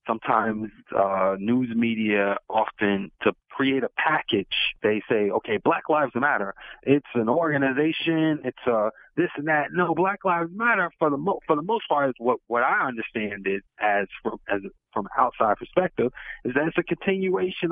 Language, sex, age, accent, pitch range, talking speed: English, male, 30-49, American, 115-160 Hz, 175 wpm